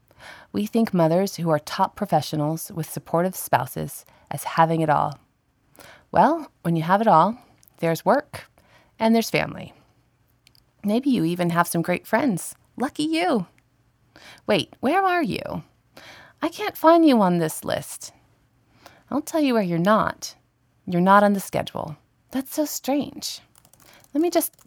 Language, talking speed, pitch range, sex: English, 150 wpm, 170-240 Hz, female